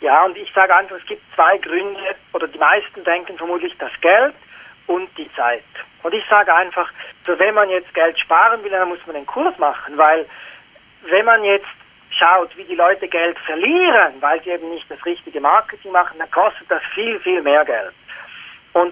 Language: German